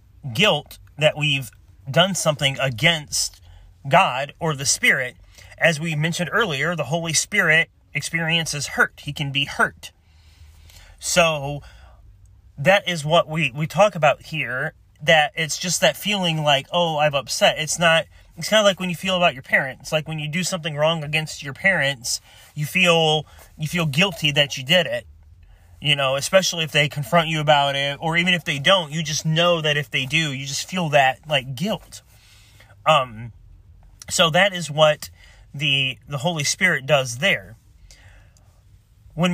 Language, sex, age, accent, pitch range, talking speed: English, male, 30-49, American, 125-170 Hz, 170 wpm